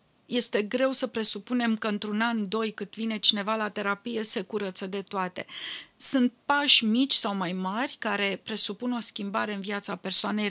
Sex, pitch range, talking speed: female, 205-250 Hz, 170 wpm